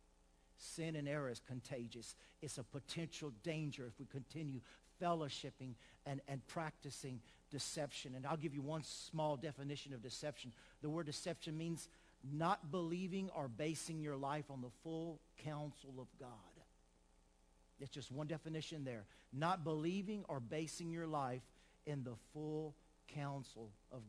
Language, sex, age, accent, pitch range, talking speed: English, male, 50-69, American, 130-160 Hz, 145 wpm